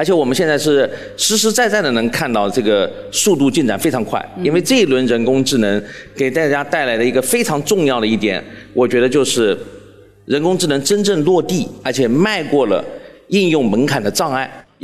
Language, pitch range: Chinese, 140-230 Hz